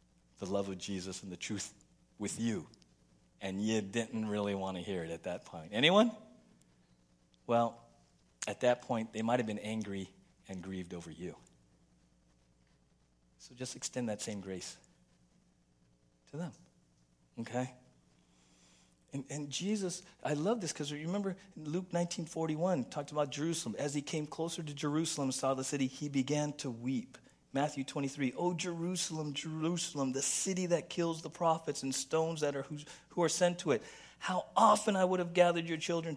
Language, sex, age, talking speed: English, male, 50-69, 165 wpm